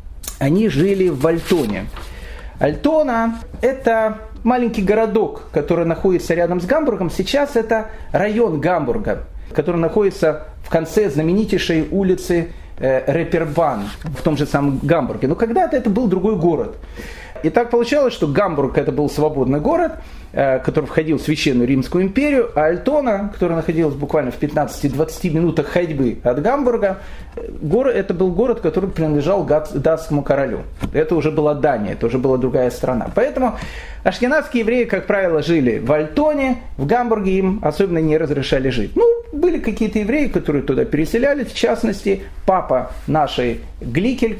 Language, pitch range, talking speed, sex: Russian, 150-225 Hz, 145 wpm, male